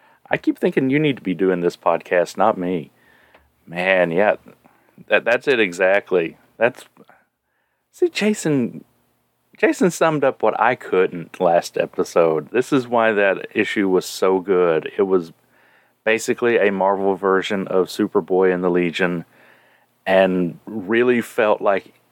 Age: 40-59